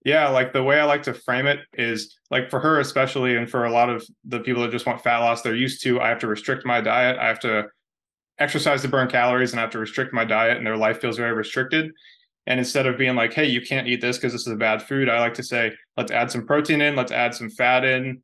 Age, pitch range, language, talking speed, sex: 20-39, 115-130 Hz, English, 280 wpm, male